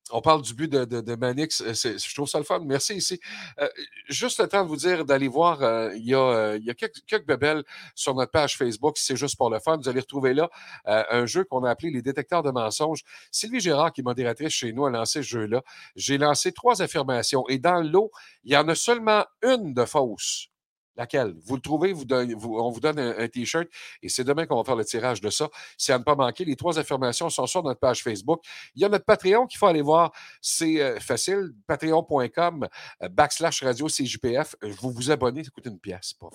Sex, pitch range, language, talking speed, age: male, 120-160 Hz, French, 235 wpm, 50-69